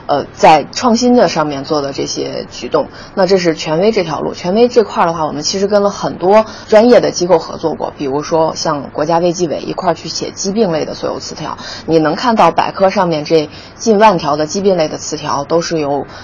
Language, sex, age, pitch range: Chinese, female, 20-39, 155-190 Hz